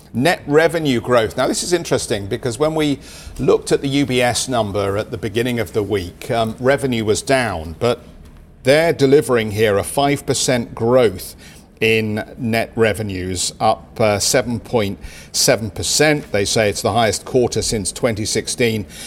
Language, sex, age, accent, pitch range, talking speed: English, male, 50-69, British, 105-130 Hz, 150 wpm